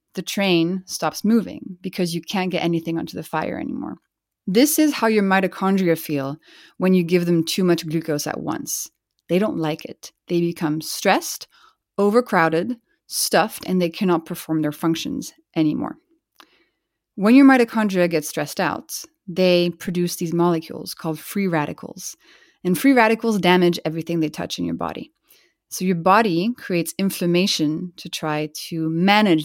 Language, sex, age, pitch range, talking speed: English, female, 30-49, 170-230 Hz, 155 wpm